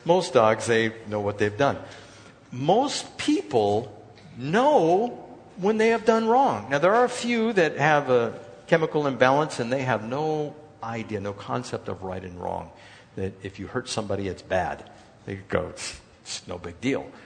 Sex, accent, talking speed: male, American, 175 wpm